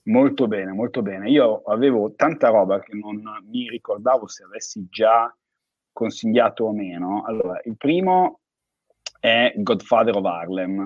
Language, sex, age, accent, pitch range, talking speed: Italian, male, 30-49, native, 95-115 Hz, 140 wpm